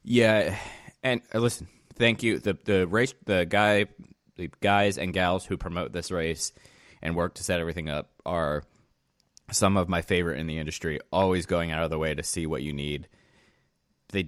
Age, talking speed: 20-39, 185 wpm